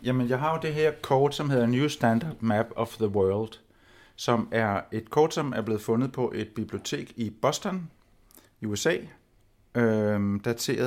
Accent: native